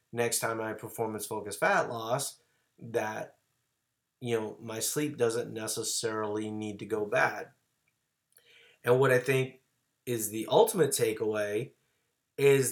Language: English